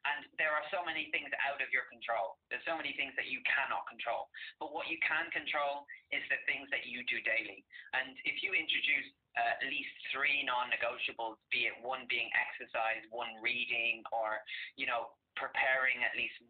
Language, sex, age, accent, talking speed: English, male, 20-39, British, 190 wpm